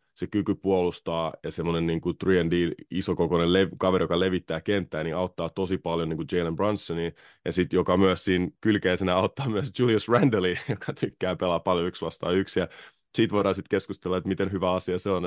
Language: Finnish